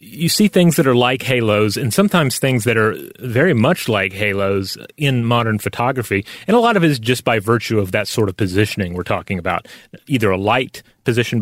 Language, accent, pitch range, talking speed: English, American, 105-140 Hz, 210 wpm